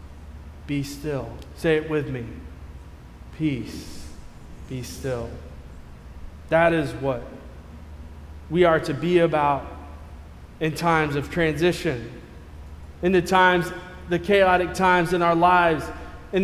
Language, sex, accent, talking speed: English, male, American, 115 wpm